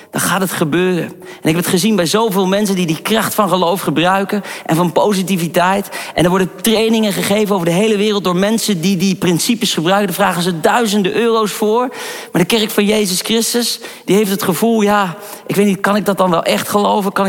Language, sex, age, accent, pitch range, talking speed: Dutch, male, 40-59, Dutch, 185-225 Hz, 220 wpm